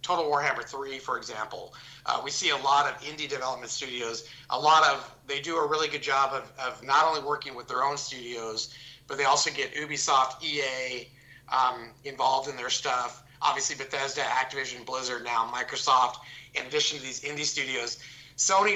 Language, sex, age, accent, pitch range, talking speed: English, male, 30-49, American, 130-145 Hz, 180 wpm